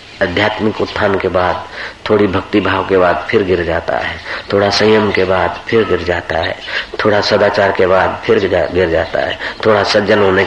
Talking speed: 185 wpm